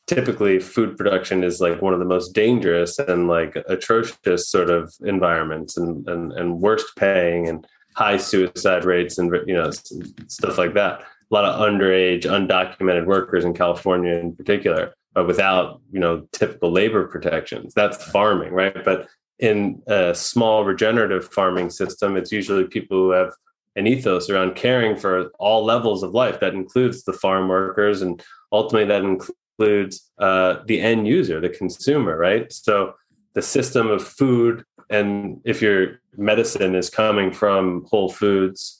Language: English